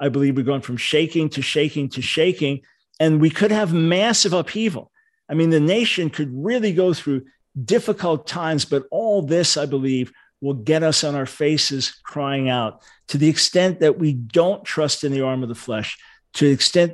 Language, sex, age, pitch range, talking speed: English, male, 50-69, 135-160 Hz, 195 wpm